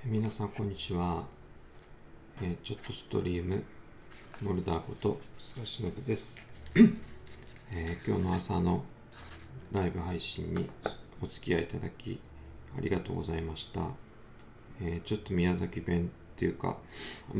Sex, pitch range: male, 80-110 Hz